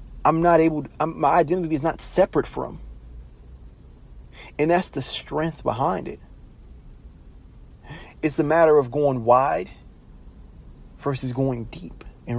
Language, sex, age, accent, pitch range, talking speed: English, male, 30-49, American, 120-145 Hz, 120 wpm